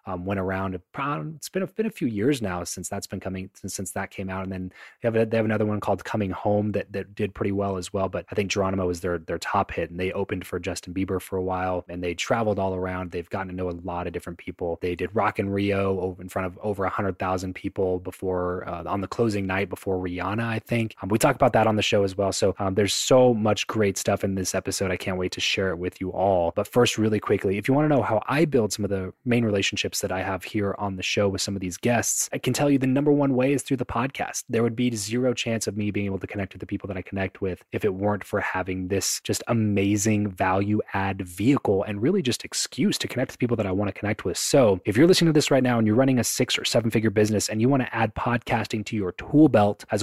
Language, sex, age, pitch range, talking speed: English, male, 20-39, 95-115 Hz, 275 wpm